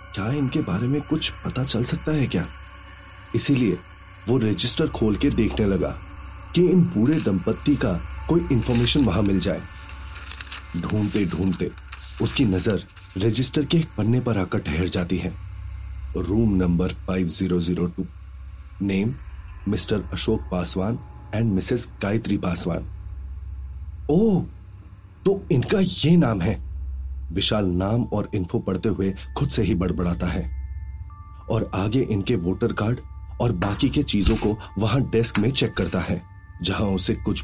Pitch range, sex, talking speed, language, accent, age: 90-115 Hz, male, 145 wpm, Hindi, native, 40-59